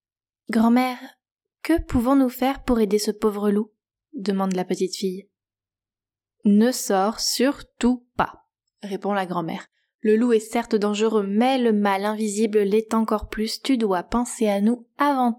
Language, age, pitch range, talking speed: French, 20-39, 190-235 Hz, 145 wpm